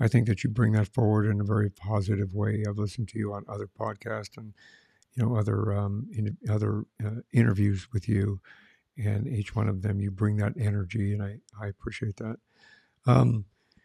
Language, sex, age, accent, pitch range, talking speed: English, male, 60-79, American, 105-120 Hz, 195 wpm